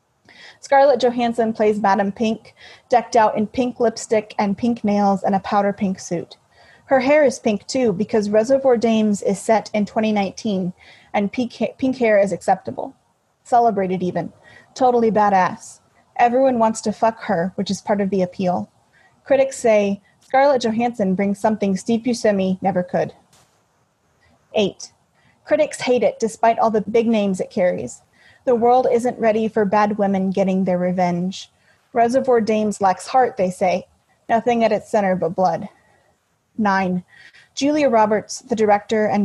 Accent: American